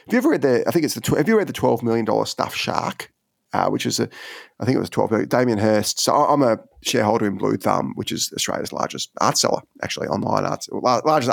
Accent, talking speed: Australian, 255 wpm